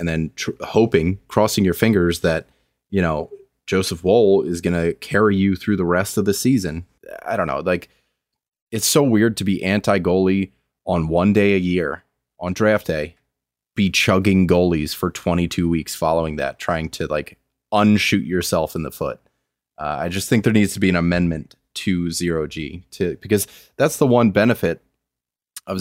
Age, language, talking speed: 30-49, English, 175 wpm